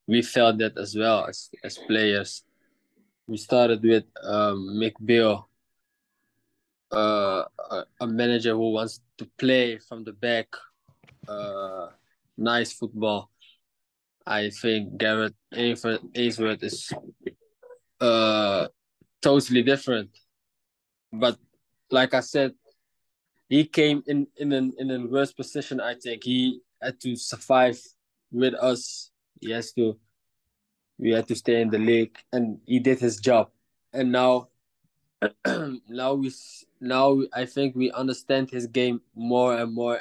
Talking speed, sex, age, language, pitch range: 130 wpm, male, 20-39, English, 105-125 Hz